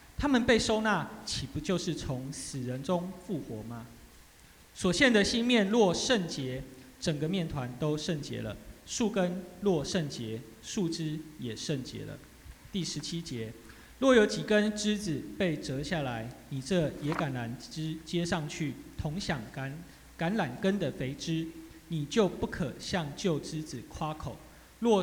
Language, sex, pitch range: Chinese, male, 135-185 Hz